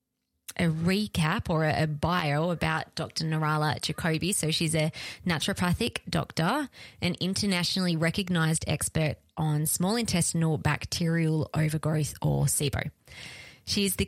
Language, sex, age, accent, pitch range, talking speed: English, female, 20-39, Australian, 155-185 Hz, 115 wpm